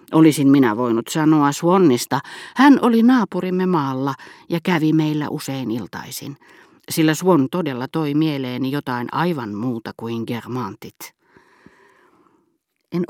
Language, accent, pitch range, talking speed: Finnish, native, 130-170 Hz, 115 wpm